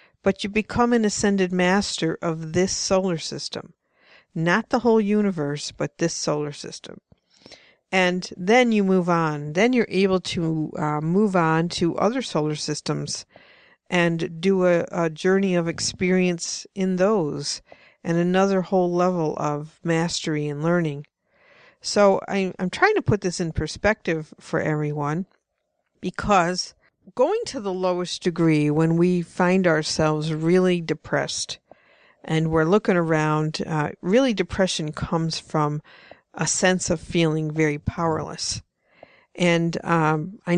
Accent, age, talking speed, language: American, 60-79, 135 wpm, English